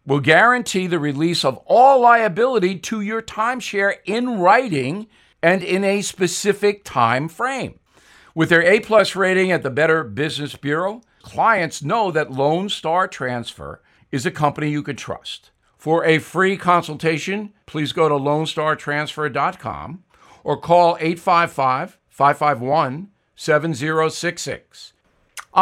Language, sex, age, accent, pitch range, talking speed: English, male, 50-69, American, 145-195 Hz, 115 wpm